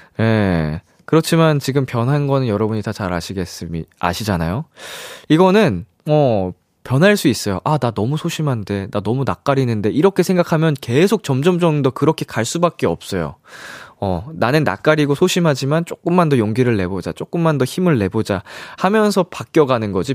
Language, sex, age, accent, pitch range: Korean, male, 20-39, native, 110-175 Hz